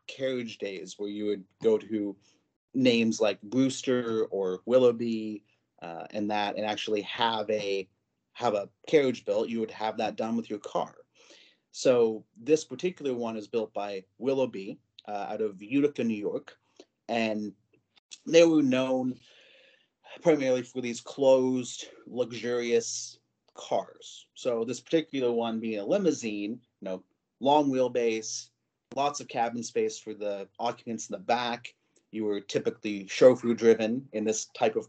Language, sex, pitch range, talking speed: English, male, 105-125 Hz, 145 wpm